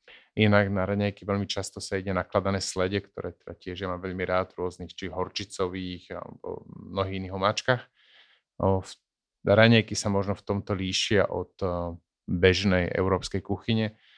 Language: Slovak